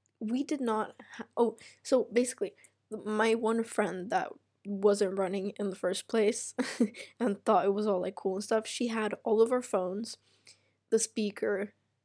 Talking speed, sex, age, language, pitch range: 170 wpm, female, 10-29, English, 200-230 Hz